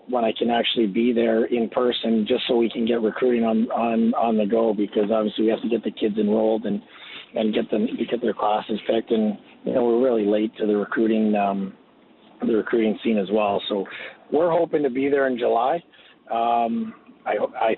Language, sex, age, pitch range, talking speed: English, male, 40-59, 105-125 Hz, 210 wpm